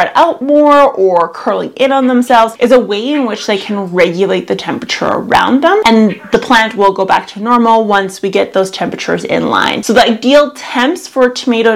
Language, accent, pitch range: English, American, 200-260 Hz